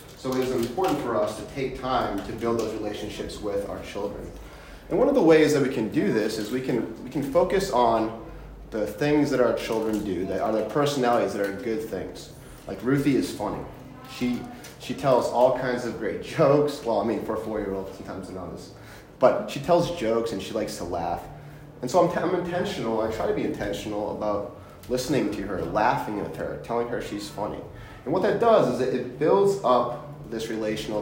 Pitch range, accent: 110-140 Hz, American